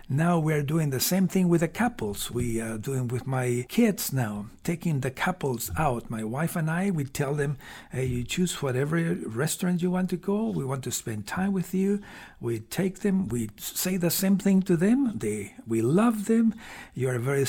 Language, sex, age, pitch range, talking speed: English, male, 50-69, 120-175 Hz, 210 wpm